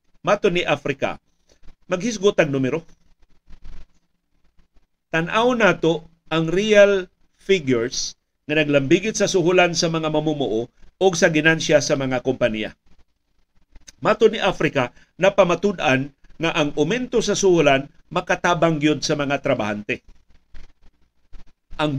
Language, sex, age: Filipino, male, 50-69